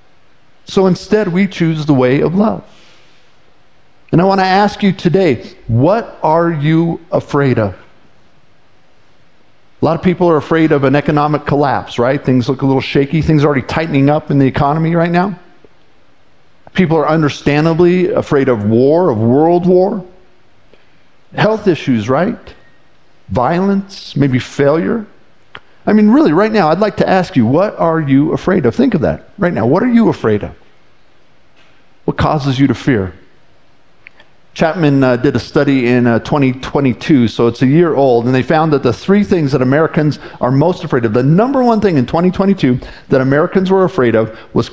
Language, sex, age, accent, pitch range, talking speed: English, male, 50-69, American, 130-180 Hz, 175 wpm